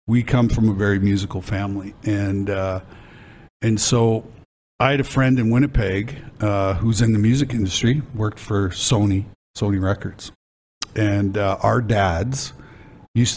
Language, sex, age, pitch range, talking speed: English, male, 50-69, 95-120 Hz, 150 wpm